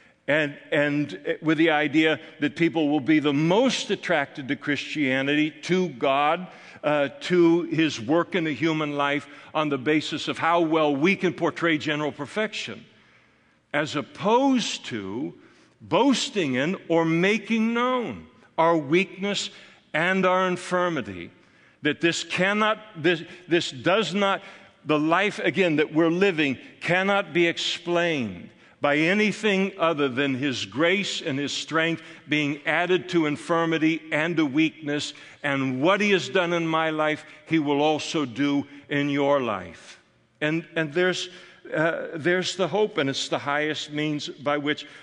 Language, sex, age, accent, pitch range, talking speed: English, male, 60-79, American, 145-175 Hz, 145 wpm